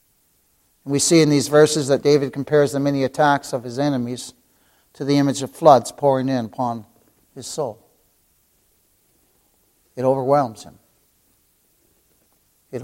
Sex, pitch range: male, 110-145 Hz